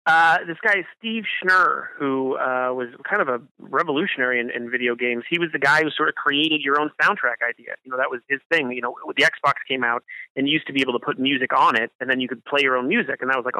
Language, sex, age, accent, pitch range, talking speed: English, male, 30-49, American, 125-155 Hz, 280 wpm